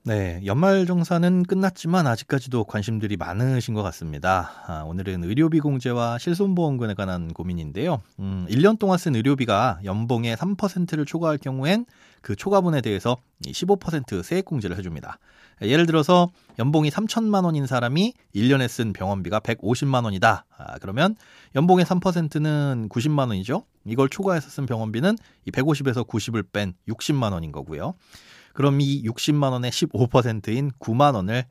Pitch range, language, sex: 110-170 Hz, Korean, male